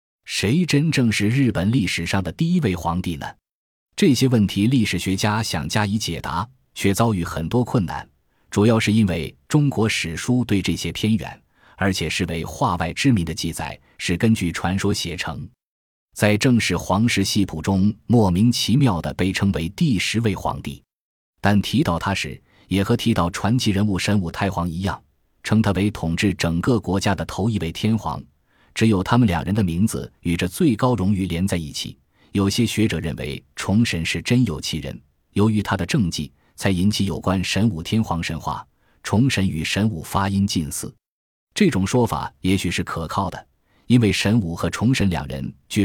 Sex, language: male, Chinese